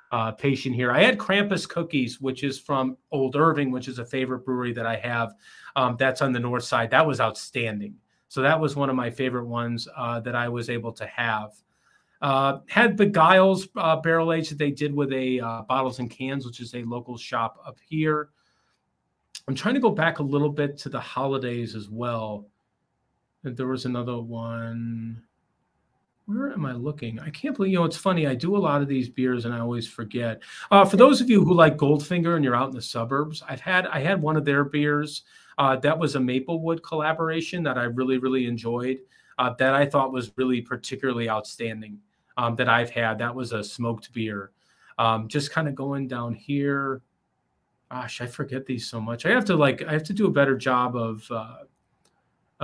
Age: 30-49